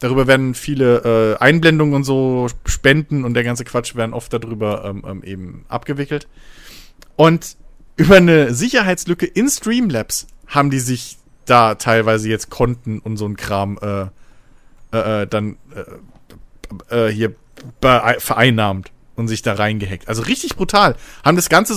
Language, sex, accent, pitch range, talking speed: German, male, German, 120-160 Hz, 150 wpm